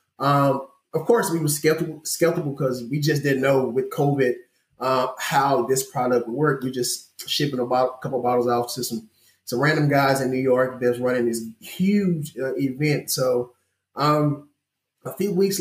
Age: 20-39